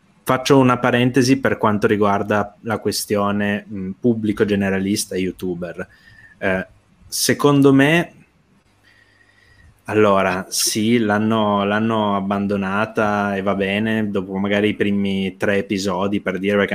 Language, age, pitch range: Italian, 20-39, 95-110 Hz